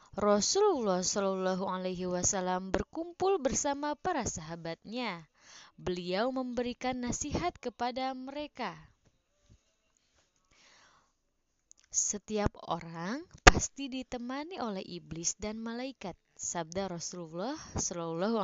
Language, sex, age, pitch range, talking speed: Indonesian, female, 20-39, 180-265 Hz, 80 wpm